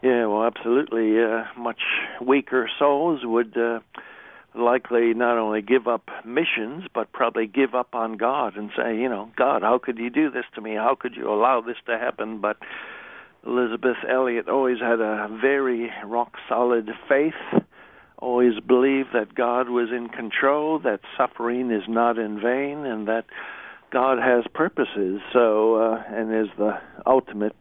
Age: 60-79